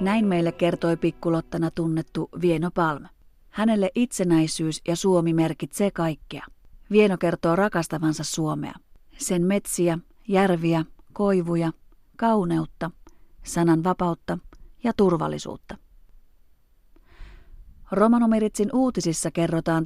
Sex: female